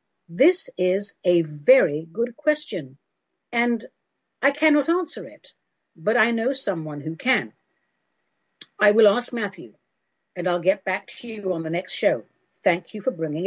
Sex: female